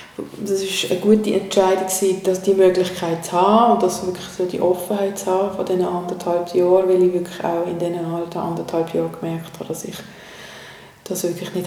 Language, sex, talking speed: German, female, 195 wpm